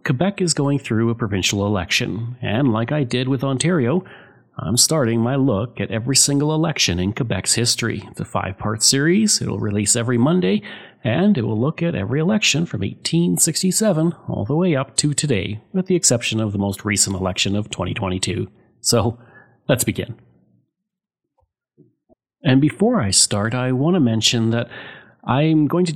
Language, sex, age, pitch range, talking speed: English, male, 40-59, 105-150 Hz, 165 wpm